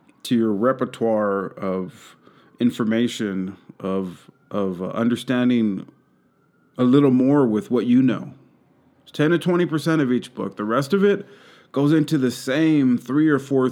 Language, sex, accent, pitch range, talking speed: English, male, American, 120-155 Hz, 145 wpm